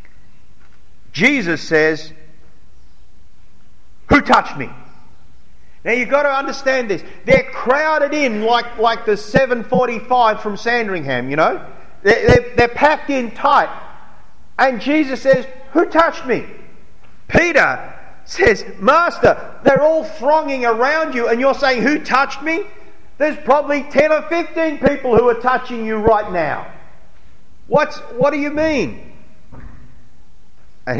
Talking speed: 125 wpm